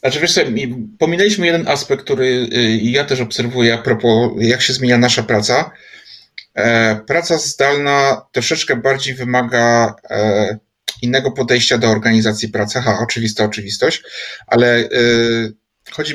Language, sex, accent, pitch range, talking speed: Polish, male, native, 115-135 Hz, 120 wpm